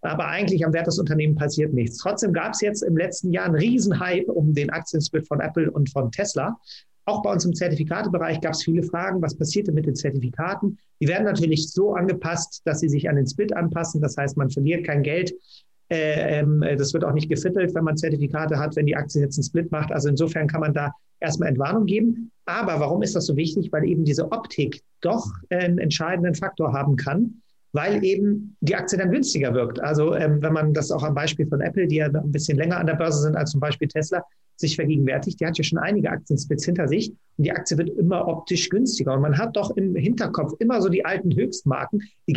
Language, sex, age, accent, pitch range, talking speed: German, male, 40-59, German, 150-190 Hz, 220 wpm